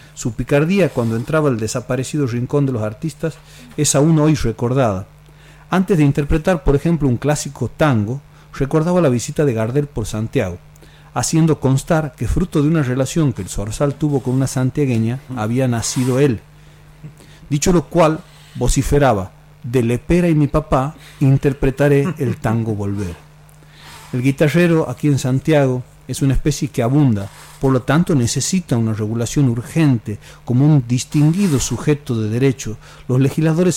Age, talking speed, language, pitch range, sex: 40-59, 150 wpm, Spanish, 115-150 Hz, male